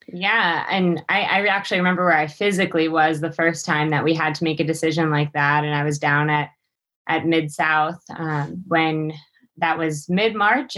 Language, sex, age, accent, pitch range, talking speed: English, female, 20-39, American, 160-185 Hz, 190 wpm